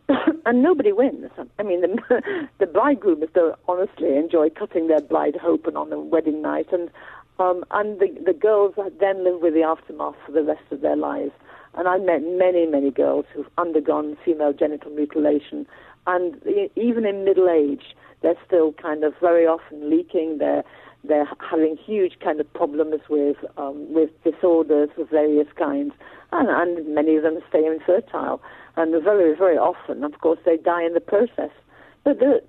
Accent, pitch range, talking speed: British, 160-215 Hz, 175 wpm